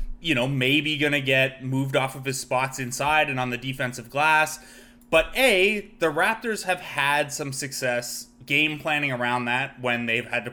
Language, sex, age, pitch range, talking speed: English, male, 20-39, 125-155 Hz, 190 wpm